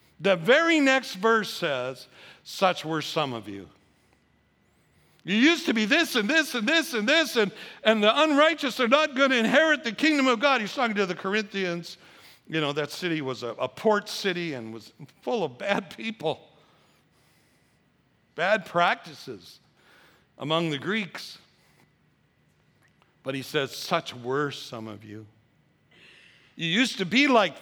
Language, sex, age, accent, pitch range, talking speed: English, male, 60-79, American, 155-225 Hz, 155 wpm